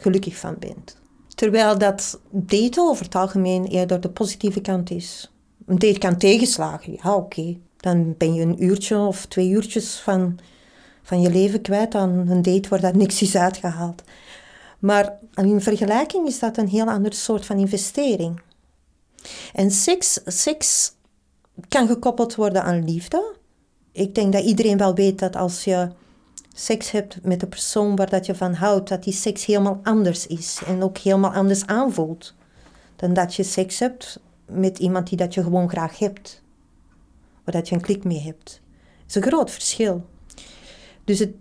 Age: 40-59